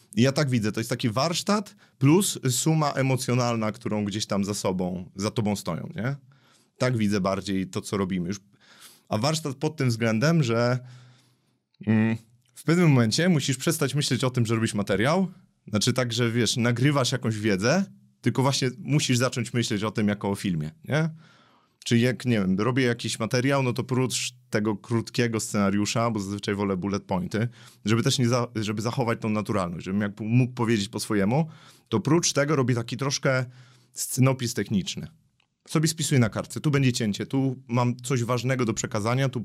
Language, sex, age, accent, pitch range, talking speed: Polish, male, 30-49, native, 110-135 Hz, 175 wpm